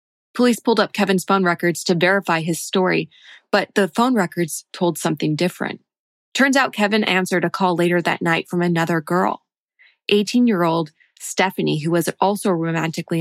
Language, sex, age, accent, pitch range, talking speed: English, female, 20-39, American, 170-205 Hz, 160 wpm